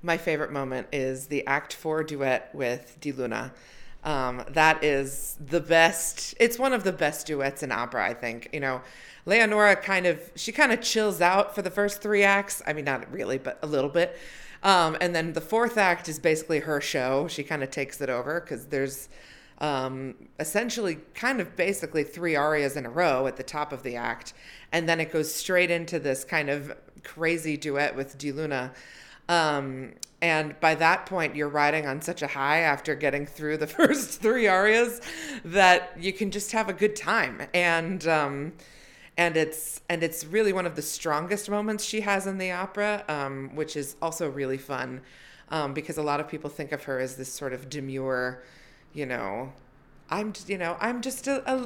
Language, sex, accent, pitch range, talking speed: English, female, American, 140-190 Hz, 195 wpm